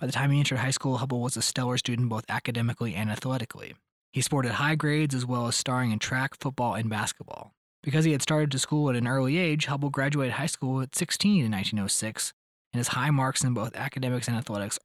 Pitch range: 115-140 Hz